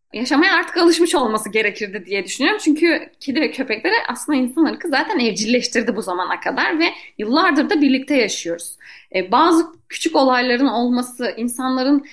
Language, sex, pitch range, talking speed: Turkish, female, 235-310 Hz, 140 wpm